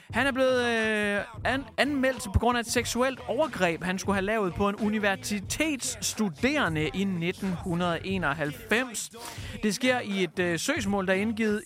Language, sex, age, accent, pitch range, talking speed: Danish, male, 30-49, native, 170-215 Hz, 140 wpm